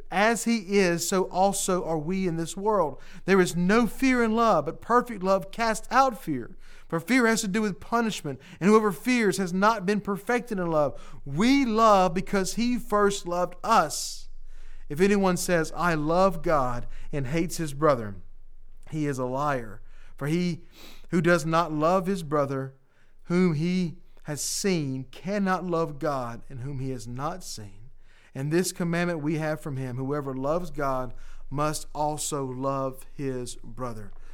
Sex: male